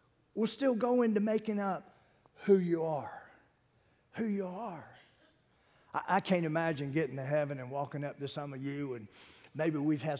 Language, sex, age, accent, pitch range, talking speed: English, male, 40-59, American, 150-245 Hz, 175 wpm